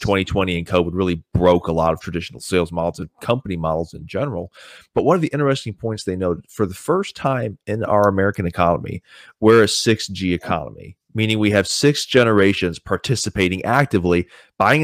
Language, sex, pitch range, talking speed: English, male, 95-135 Hz, 180 wpm